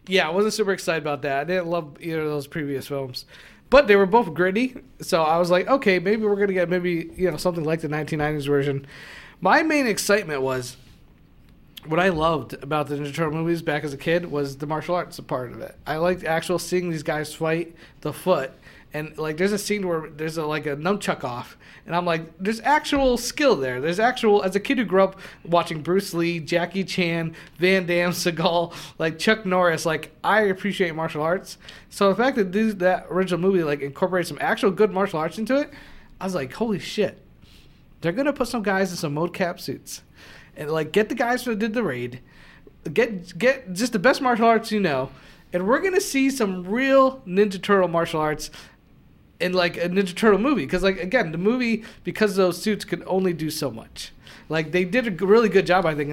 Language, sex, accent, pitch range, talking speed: English, male, American, 160-205 Hz, 220 wpm